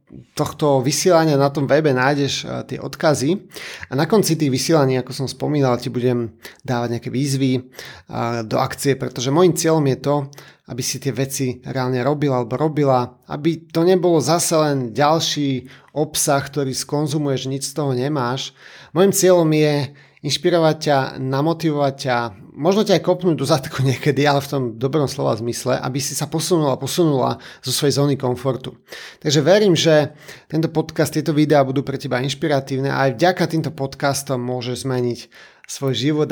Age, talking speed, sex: 30-49, 160 wpm, male